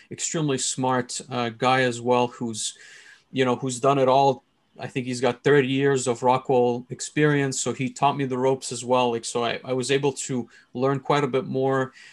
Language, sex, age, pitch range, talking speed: English, male, 30-49, 125-140 Hz, 210 wpm